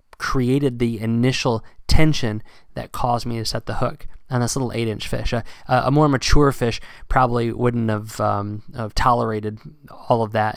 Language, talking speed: English, 170 wpm